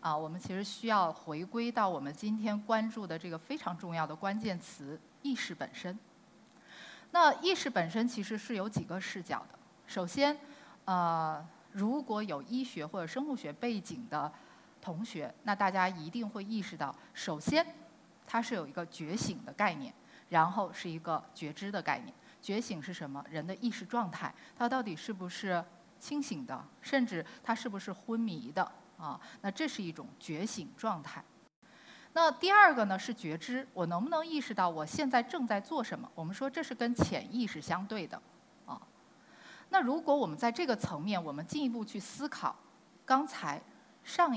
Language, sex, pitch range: Chinese, female, 175-260 Hz